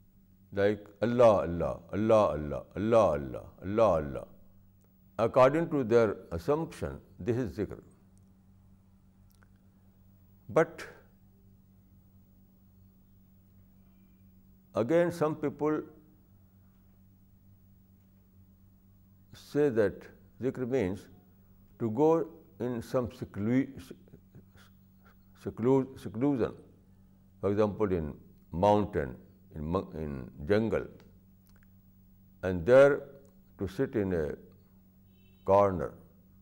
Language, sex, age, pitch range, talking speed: Urdu, male, 60-79, 95-105 Hz, 70 wpm